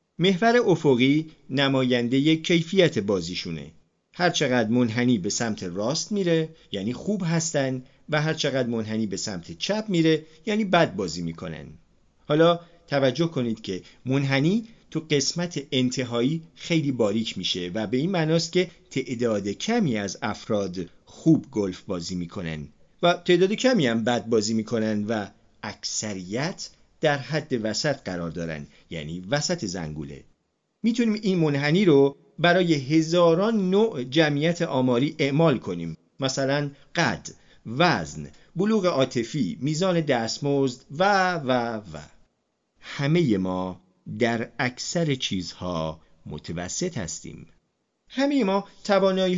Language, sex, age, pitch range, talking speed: Persian, male, 40-59, 110-170 Hz, 120 wpm